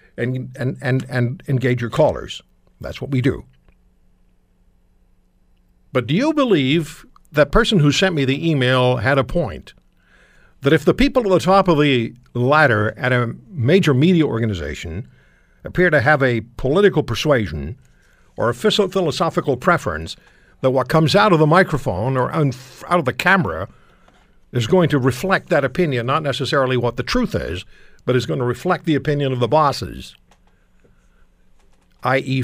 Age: 60-79